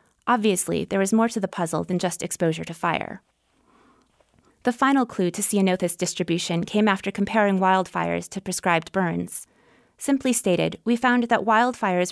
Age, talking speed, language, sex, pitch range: 20-39, 155 wpm, English, female, 180-215 Hz